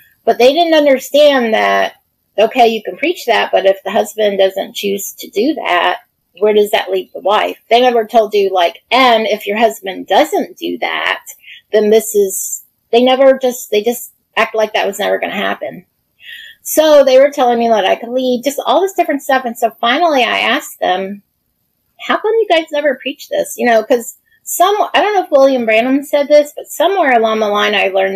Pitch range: 200-270 Hz